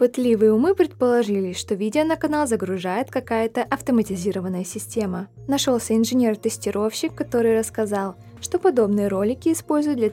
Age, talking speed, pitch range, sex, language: 20-39, 120 wpm, 200-250 Hz, female, Russian